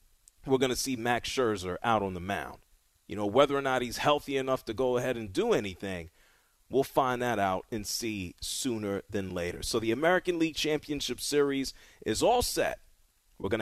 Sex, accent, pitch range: male, American, 100-140 Hz